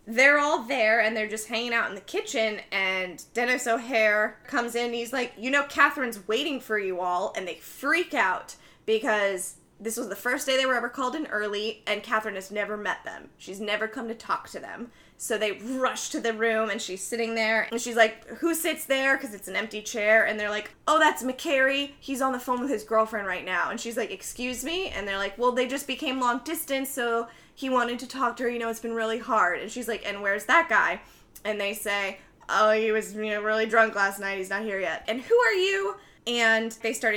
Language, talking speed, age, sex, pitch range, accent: English, 235 wpm, 20-39, female, 215-275 Hz, American